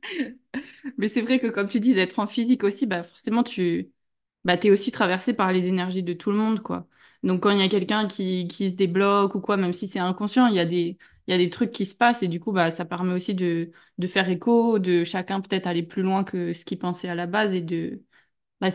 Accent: French